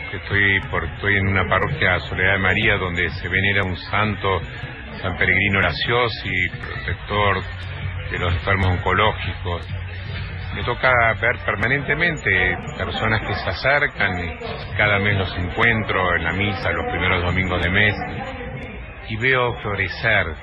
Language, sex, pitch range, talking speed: Spanish, male, 95-115 Hz, 135 wpm